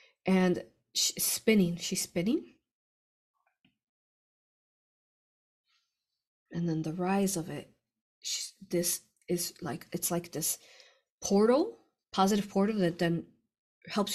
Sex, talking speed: female, 95 wpm